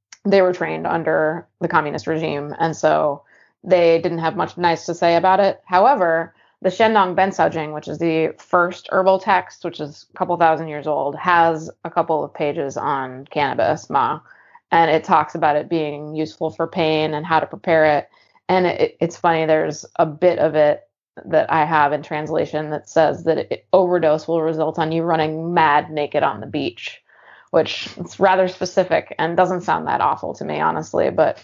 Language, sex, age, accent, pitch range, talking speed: English, female, 20-39, American, 155-180 Hz, 190 wpm